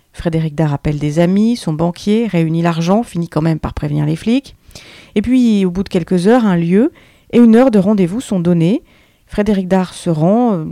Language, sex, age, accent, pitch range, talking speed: French, female, 40-59, French, 170-230 Hz, 200 wpm